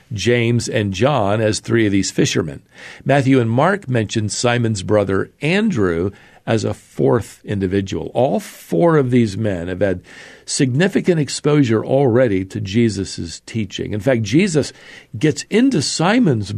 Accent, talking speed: American, 140 wpm